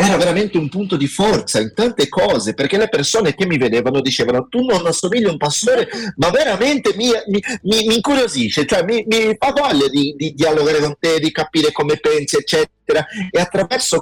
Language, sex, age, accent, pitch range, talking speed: Italian, male, 30-49, native, 120-180 Hz, 190 wpm